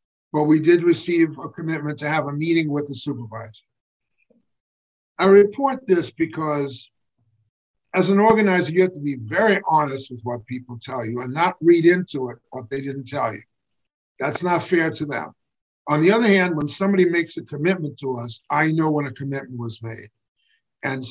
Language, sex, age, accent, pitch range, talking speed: English, male, 50-69, American, 125-170 Hz, 185 wpm